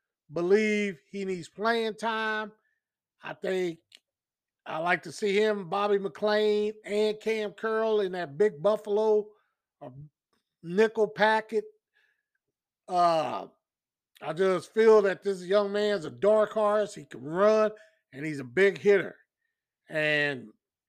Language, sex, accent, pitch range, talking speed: English, male, American, 175-220 Hz, 125 wpm